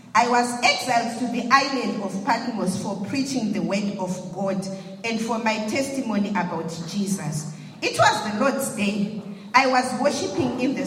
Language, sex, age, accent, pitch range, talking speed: English, female, 40-59, South African, 200-255 Hz, 165 wpm